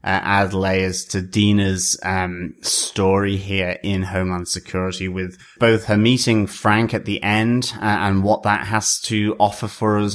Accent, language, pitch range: British, English, 95-110 Hz